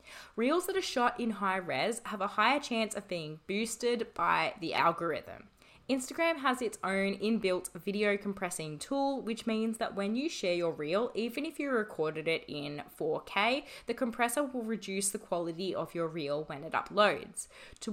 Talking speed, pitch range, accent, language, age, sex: 175 wpm, 180-245 Hz, Australian, English, 20-39, female